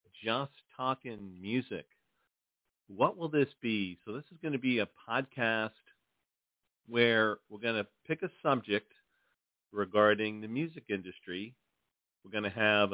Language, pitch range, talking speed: English, 100-125 Hz, 140 wpm